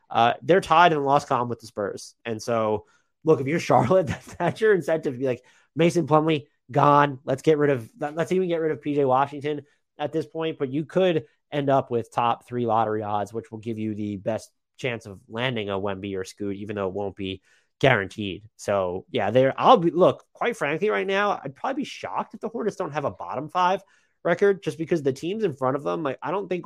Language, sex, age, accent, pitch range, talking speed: English, male, 30-49, American, 110-150 Hz, 230 wpm